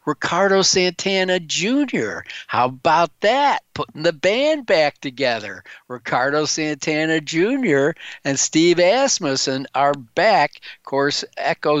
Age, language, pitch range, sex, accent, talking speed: 50-69, English, 135-175 Hz, male, American, 110 wpm